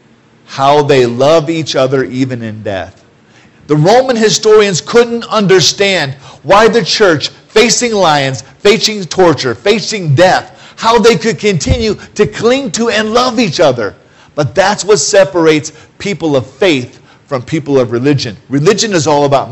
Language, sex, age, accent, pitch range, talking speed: English, male, 50-69, American, 130-185 Hz, 150 wpm